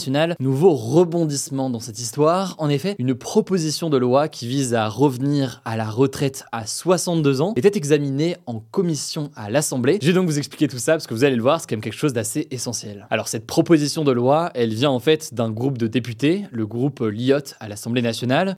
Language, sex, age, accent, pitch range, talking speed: French, male, 20-39, French, 120-155 Hz, 215 wpm